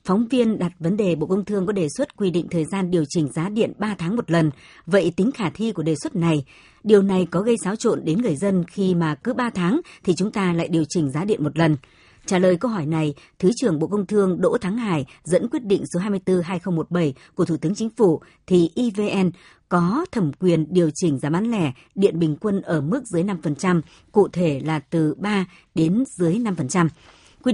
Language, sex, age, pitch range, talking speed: Vietnamese, male, 60-79, 160-200 Hz, 225 wpm